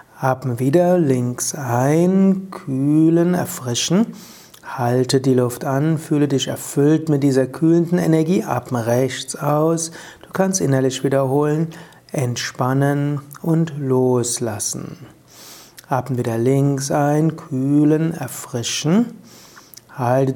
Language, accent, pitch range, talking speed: German, German, 130-160 Hz, 100 wpm